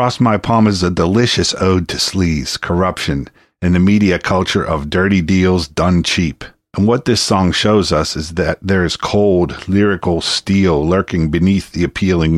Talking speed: 175 wpm